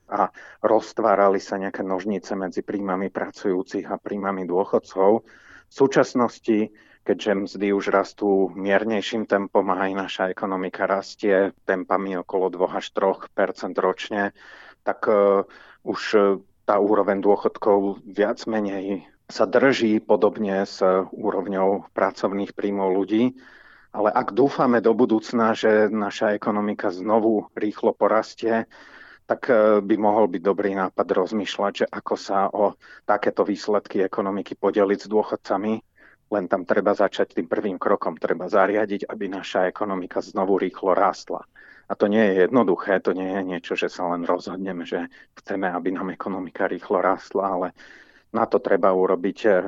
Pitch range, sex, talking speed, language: 95-105 Hz, male, 135 wpm, Slovak